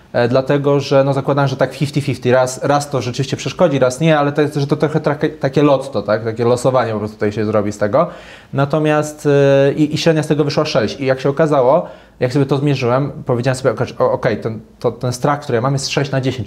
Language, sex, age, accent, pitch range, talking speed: Polish, male, 20-39, native, 125-150 Hz, 230 wpm